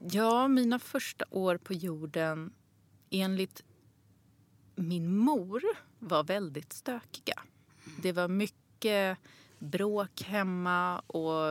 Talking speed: 95 wpm